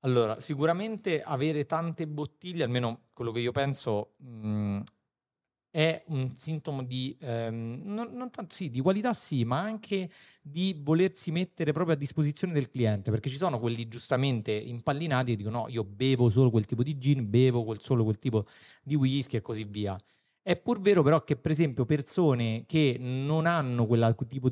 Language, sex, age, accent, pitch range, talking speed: Italian, male, 30-49, native, 120-160 Hz, 175 wpm